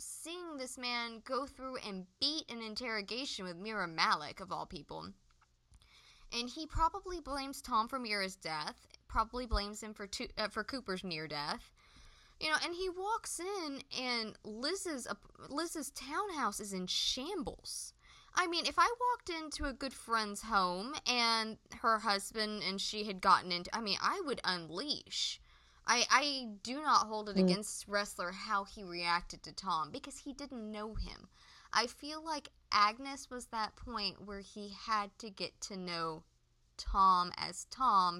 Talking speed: 165 wpm